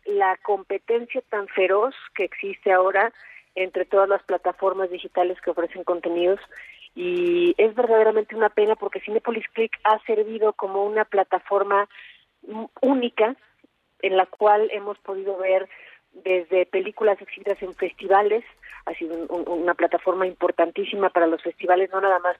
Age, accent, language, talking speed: 40-59, Mexican, Spanish, 135 wpm